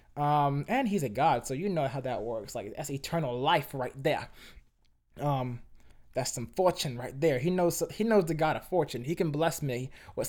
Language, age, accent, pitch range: English, 20-39, American, 130-180 Hz